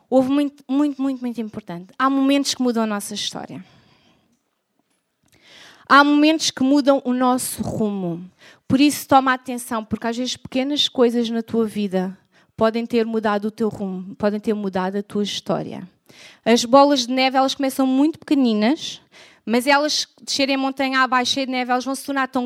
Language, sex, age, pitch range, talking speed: Portuguese, female, 20-39, 225-275 Hz, 175 wpm